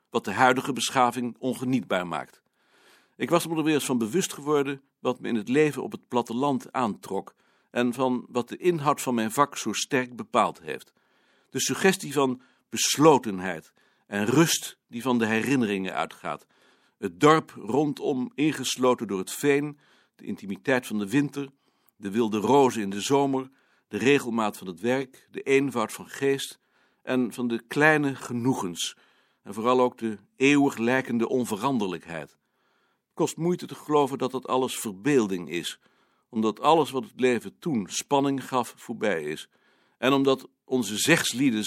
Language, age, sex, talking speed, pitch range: Dutch, 60-79, male, 160 wpm, 115-140 Hz